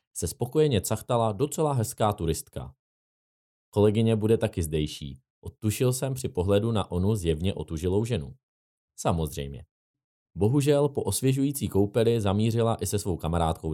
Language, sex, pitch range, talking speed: Czech, male, 85-125 Hz, 125 wpm